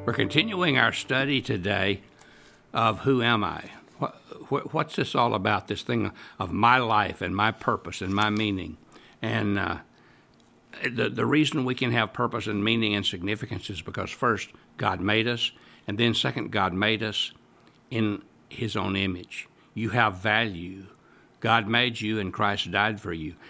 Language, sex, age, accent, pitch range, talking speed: English, male, 60-79, American, 100-125 Hz, 170 wpm